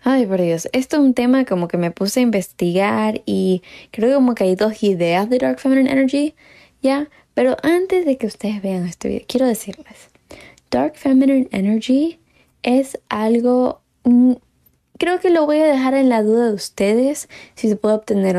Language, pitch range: Spanish, 200-260 Hz